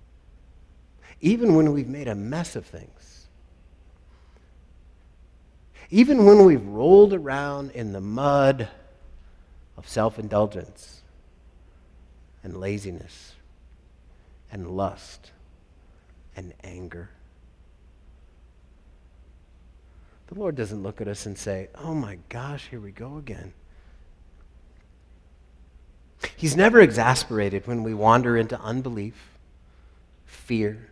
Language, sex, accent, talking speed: English, male, American, 95 wpm